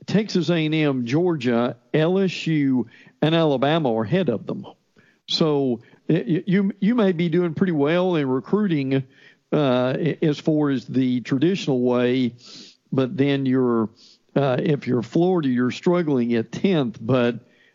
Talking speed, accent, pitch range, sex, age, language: 130 wpm, American, 125-165 Hz, male, 50-69, English